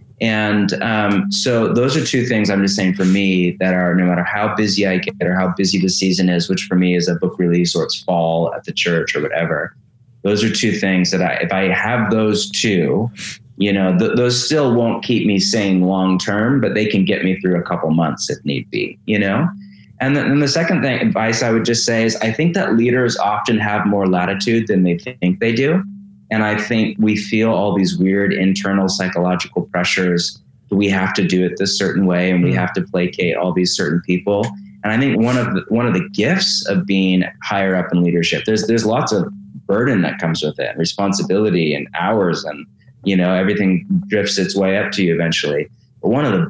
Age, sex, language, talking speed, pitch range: 20-39, male, English, 220 wpm, 90-115 Hz